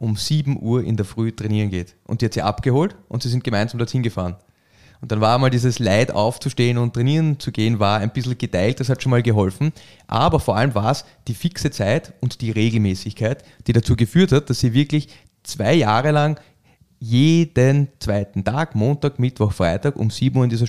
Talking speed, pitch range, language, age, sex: 205 wpm, 110-140 Hz, German, 30-49, male